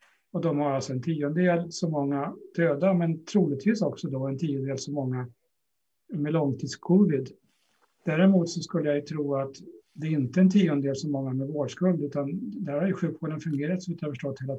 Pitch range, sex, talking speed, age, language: 140-175 Hz, male, 185 wpm, 60-79, Swedish